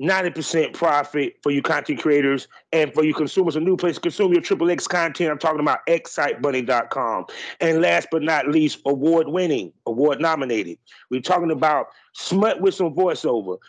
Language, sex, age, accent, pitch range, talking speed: English, male, 30-49, American, 145-185 Hz, 165 wpm